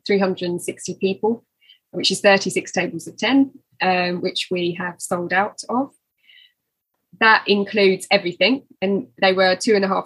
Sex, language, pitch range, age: female, English, 185-220 Hz, 20-39